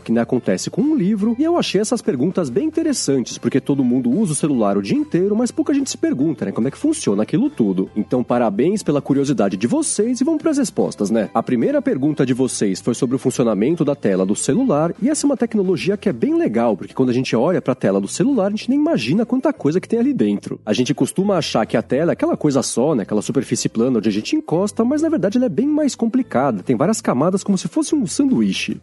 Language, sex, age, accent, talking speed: Portuguese, male, 30-49, Brazilian, 255 wpm